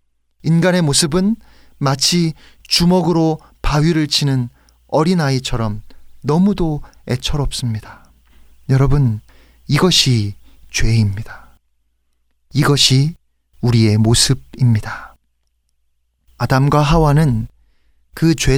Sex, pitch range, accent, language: male, 110-175 Hz, native, Korean